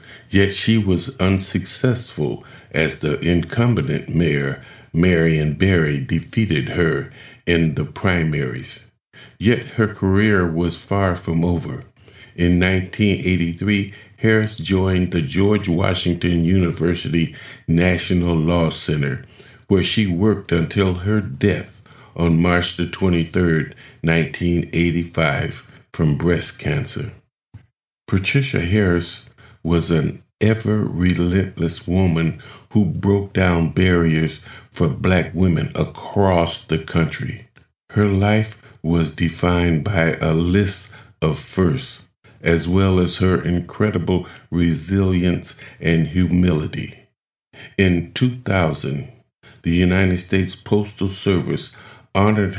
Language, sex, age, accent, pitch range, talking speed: English, male, 50-69, American, 85-105 Hz, 100 wpm